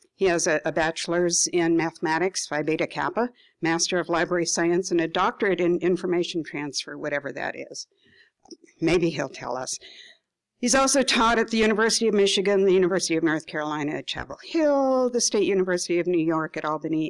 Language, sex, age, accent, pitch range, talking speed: English, female, 60-79, American, 170-230 Hz, 180 wpm